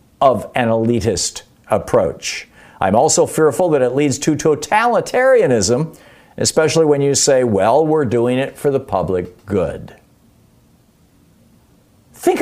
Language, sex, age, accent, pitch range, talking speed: English, male, 50-69, American, 135-185 Hz, 120 wpm